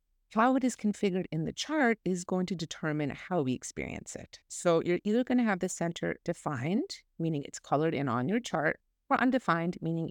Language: English